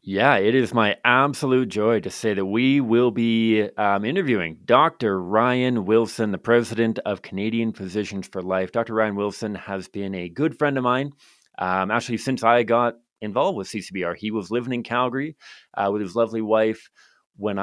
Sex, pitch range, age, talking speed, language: male, 95-120 Hz, 30-49, 180 wpm, English